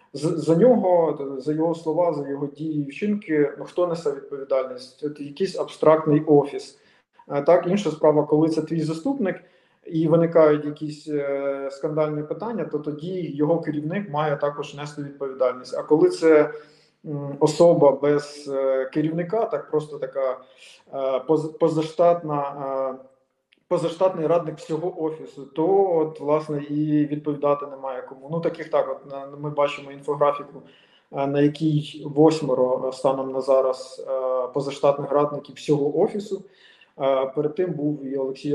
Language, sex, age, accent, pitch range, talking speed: Ukrainian, male, 20-39, native, 140-165 Hz, 135 wpm